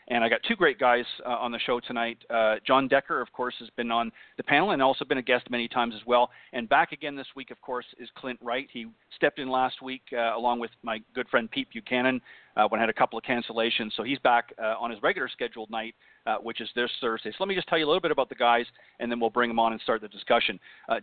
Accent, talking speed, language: American, 280 wpm, English